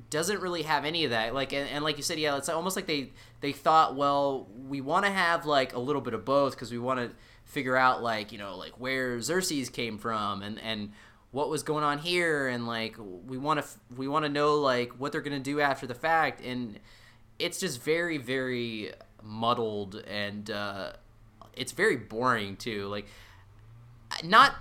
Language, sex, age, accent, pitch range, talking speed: English, male, 20-39, American, 110-150 Hz, 200 wpm